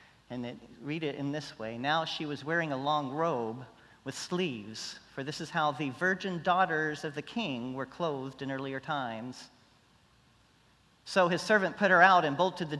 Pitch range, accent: 135-180 Hz, American